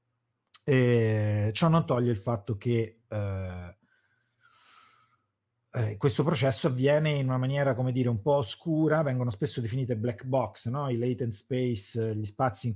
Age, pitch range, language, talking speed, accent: 30-49, 105-130 Hz, Italian, 150 wpm, native